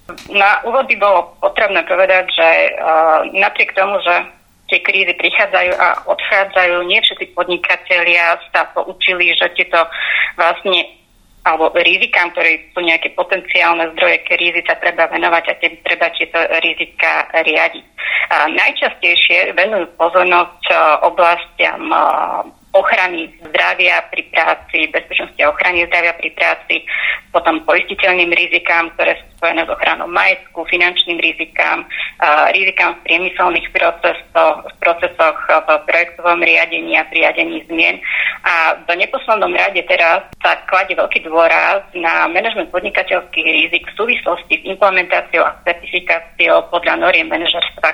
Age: 30-49